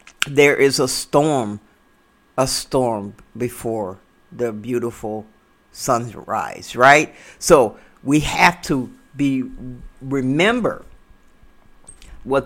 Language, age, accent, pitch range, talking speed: English, 50-69, American, 125-155 Hz, 85 wpm